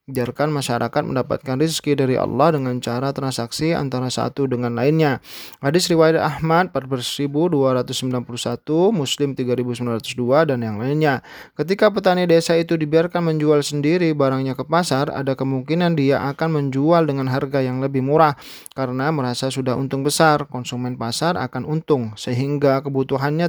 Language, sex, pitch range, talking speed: Indonesian, male, 130-155 Hz, 135 wpm